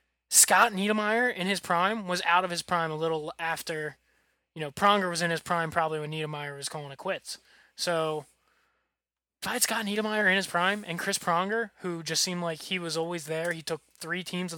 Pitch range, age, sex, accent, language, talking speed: 165-220 Hz, 20-39, male, American, English, 205 wpm